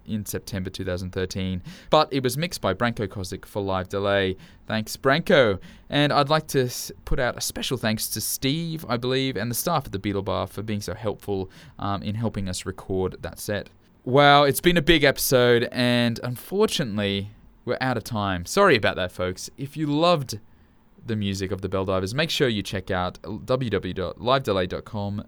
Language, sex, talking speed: English, male, 185 wpm